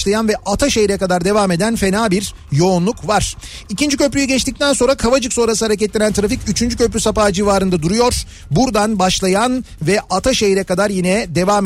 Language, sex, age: Turkish, male, 40-59